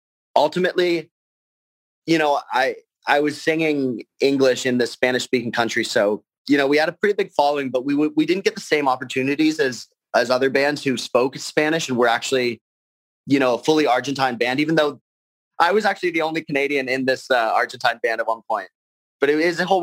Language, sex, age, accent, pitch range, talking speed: English, male, 30-49, American, 120-155 Hz, 205 wpm